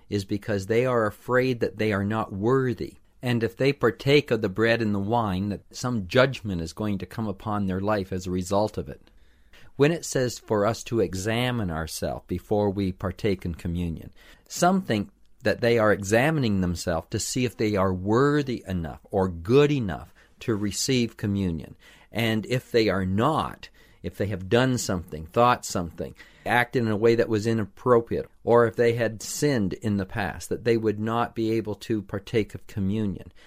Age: 50-69